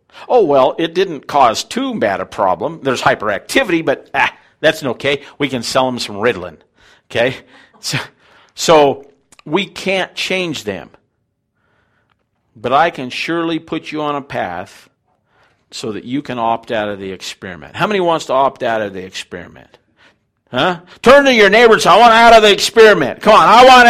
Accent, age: American, 50-69